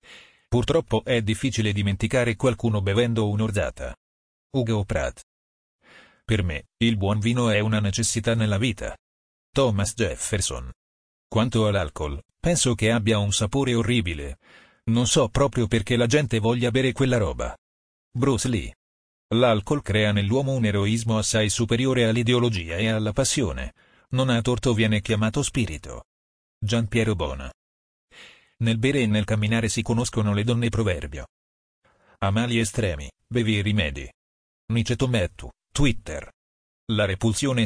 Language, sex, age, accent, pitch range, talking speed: Italian, male, 40-59, native, 95-120 Hz, 130 wpm